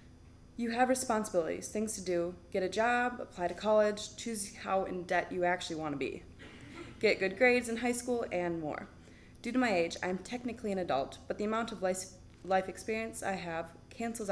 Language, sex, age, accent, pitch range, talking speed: English, female, 20-39, American, 160-215 Hz, 200 wpm